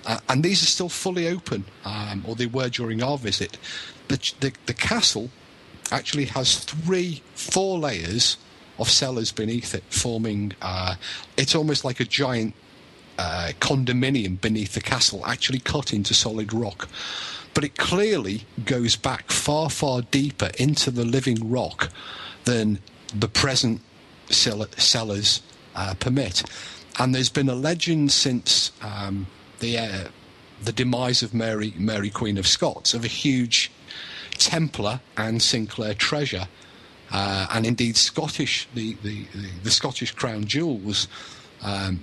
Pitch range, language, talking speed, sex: 105-135 Hz, English, 135 wpm, male